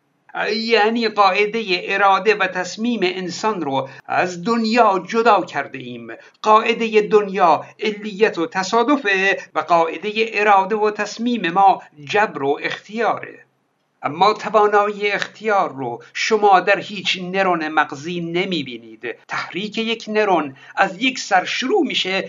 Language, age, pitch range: Persian, 60-79, 180-225 Hz